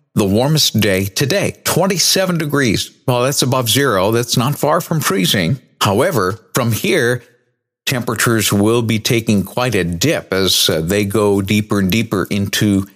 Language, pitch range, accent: English, 100-140 Hz, American